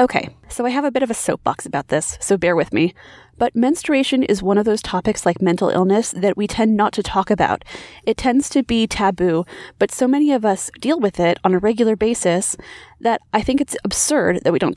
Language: English